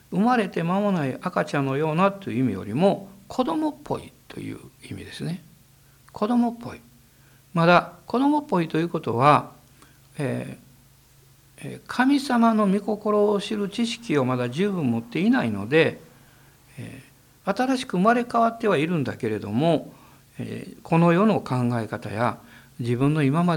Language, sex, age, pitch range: Japanese, male, 60-79, 125-195 Hz